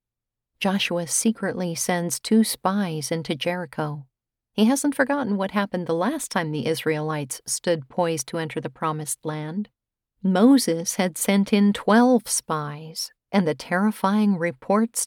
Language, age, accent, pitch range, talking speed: English, 50-69, American, 160-205 Hz, 135 wpm